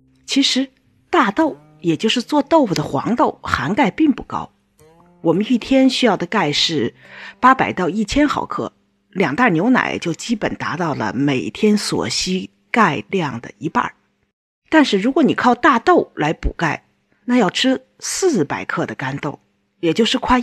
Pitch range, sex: 165-265 Hz, female